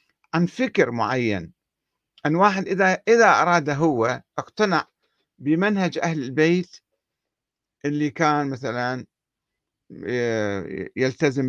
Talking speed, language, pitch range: 90 wpm, Arabic, 125-175 Hz